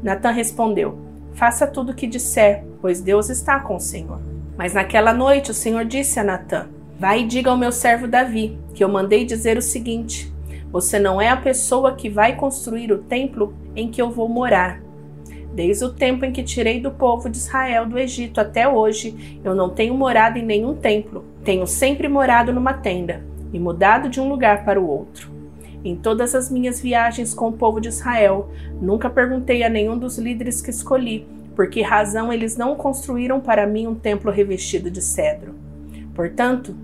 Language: Portuguese